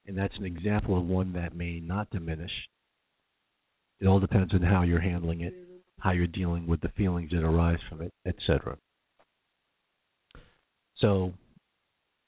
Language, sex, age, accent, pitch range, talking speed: English, male, 50-69, American, 85-110 Hz, 145 wpm